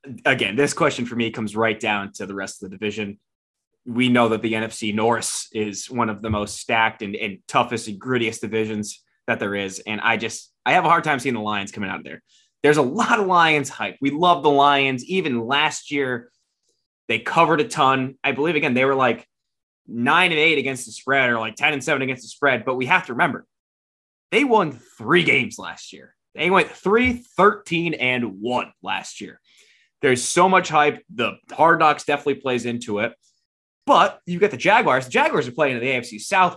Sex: male